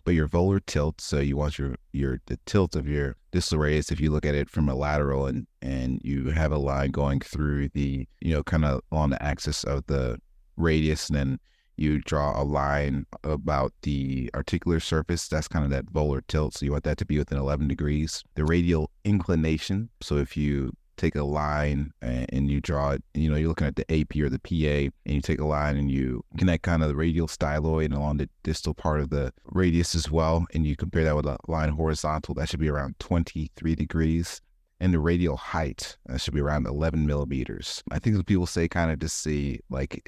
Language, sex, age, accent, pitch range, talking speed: English, male, 30-49, American, 70-80 Hz, 220 wpm